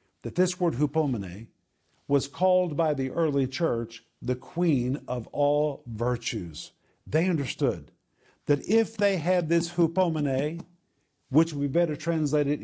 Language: English